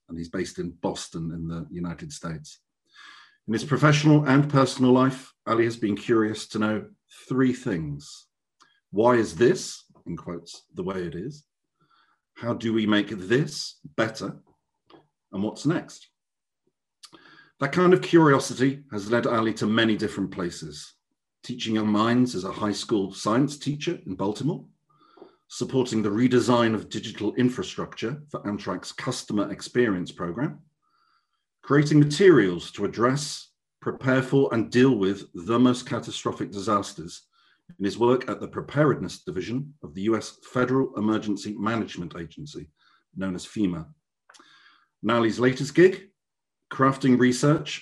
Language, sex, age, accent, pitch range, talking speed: English, male, 50-69, British, 105-135 Hz, 135 wpm